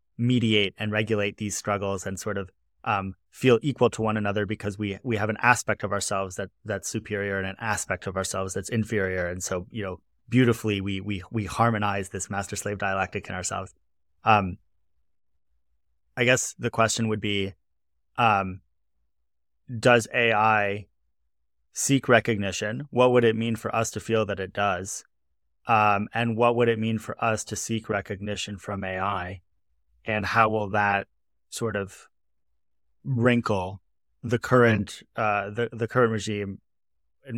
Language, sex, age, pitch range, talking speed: English, male, 30-49, 95-110 Hz, 155 wpm